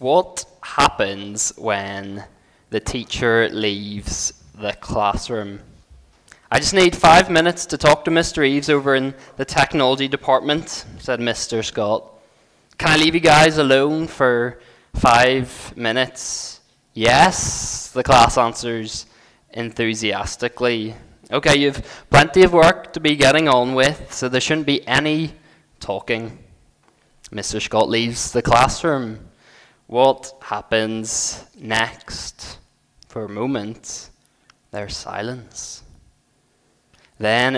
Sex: male